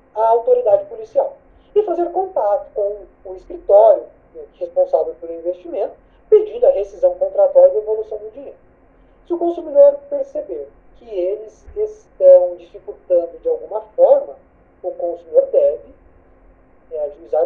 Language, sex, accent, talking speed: Portuguese, male, Brazilian, 120 wpm